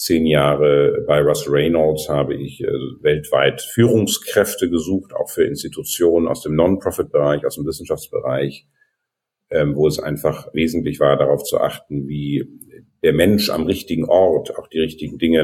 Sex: male